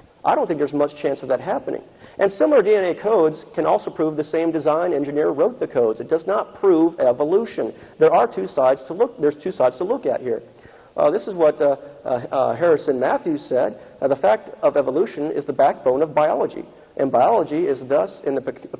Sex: male